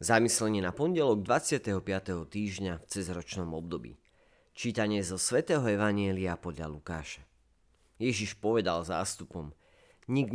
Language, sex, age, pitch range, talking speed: Slovak, male, 40-59, 85-115 Hz, 105 wpm